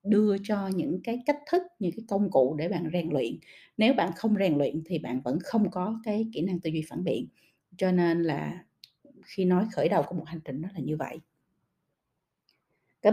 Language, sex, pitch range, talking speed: Vietnamese, female, 155-210 Hz, 215 wpm